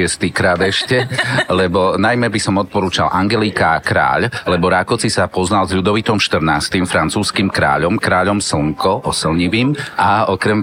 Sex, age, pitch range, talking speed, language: male, 40-59, 90-105 Hz, 125 wpm, Slovak